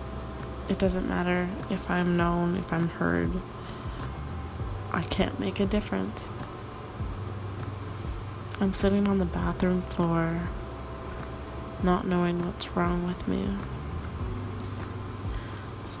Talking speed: 100 wpm